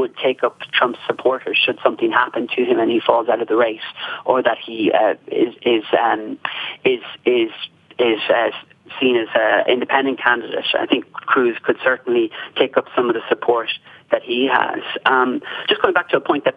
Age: 40-59